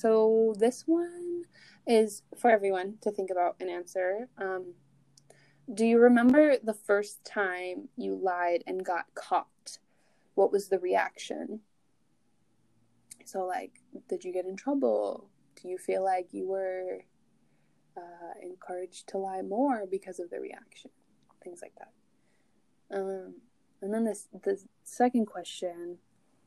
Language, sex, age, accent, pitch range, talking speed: English, female, 20-39, American, 180-225 Hz, 135 wpm